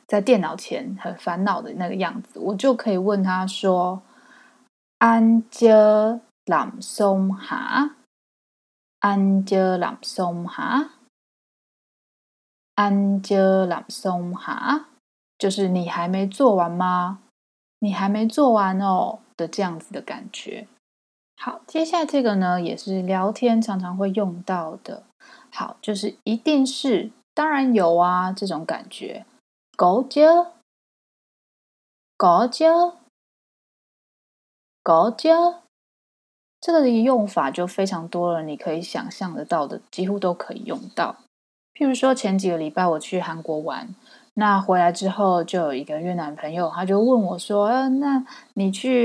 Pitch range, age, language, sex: 180-235 Hz, 20-39, Chinese, female